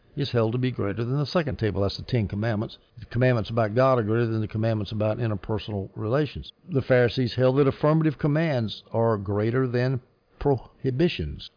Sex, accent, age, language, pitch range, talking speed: male, American, 60-79, English, 110-145 Hz, 180 wpm